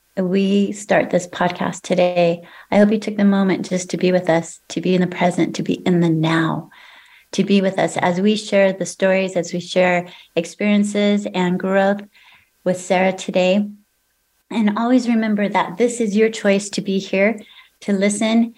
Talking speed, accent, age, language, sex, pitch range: 185 wpm, American, 30-49, English, female, 180-220 Hz